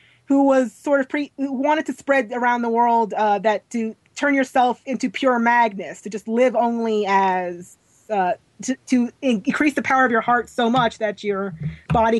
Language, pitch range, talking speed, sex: English, 200-255 Hz, 185 wpm, female